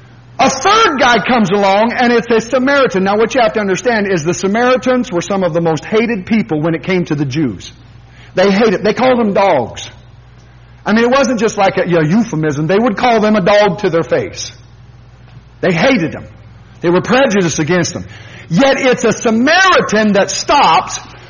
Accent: American